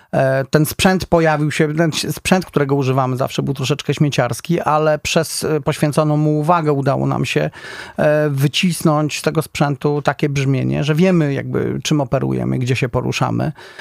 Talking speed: 150 wpm